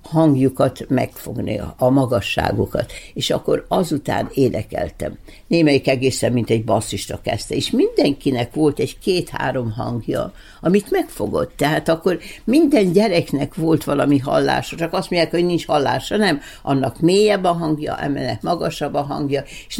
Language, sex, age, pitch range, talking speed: Hungarian, female, 60-79, 135-185 Hz, 140 wpm